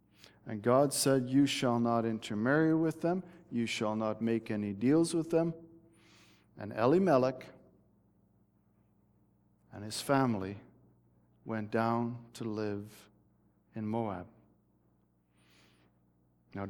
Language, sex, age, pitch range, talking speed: English, male, 50-69, 105-170 Hz, 105 wpm